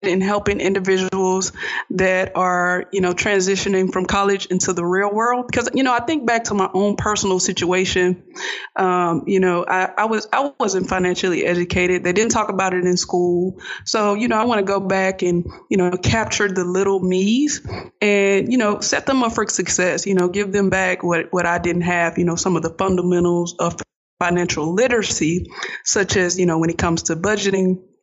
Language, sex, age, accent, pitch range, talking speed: English, female, 20-39, American, 180-210 Hz, 200 wpm